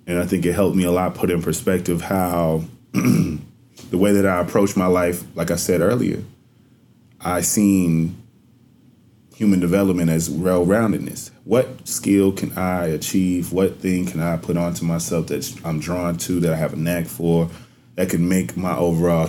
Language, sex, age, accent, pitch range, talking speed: English, male, 30-49, American, 85-95 Hz, 175 wpm